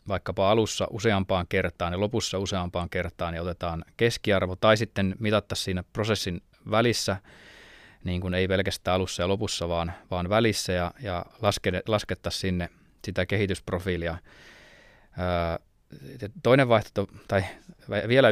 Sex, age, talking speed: male, 20-39, 130 wpm